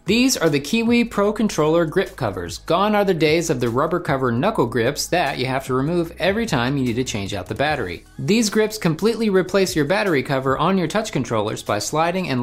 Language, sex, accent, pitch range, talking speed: English, male, American, 130-195 Hz, 220 wpm